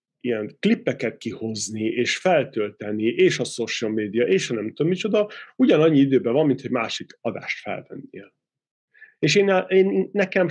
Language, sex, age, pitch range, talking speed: Hungarian, male, 30-49, 120-150 Hz, 150 wpm